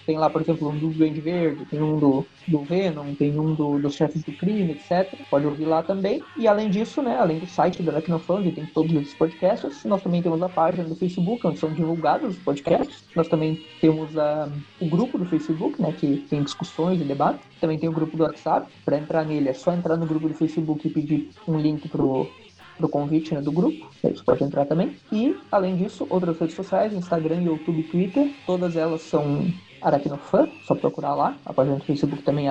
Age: 20-39